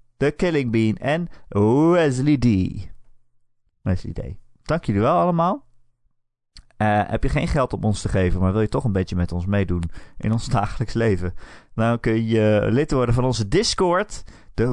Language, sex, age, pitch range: Dutch, male, 30-49, 95-125 Hz